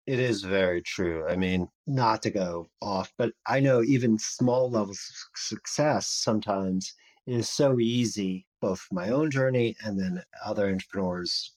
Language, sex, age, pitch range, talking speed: English, male, 40-59, 95-120 Hz, 155 wpm